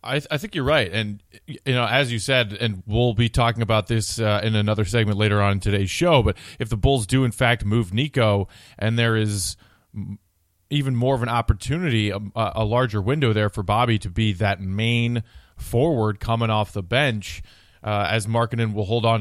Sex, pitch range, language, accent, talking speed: male, 105-125 Hz, English, American, 205 wpm